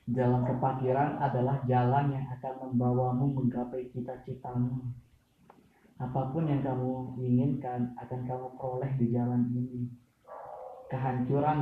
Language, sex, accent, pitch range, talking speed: Indonesian, male, native, 120-130 Hz, 105 wpm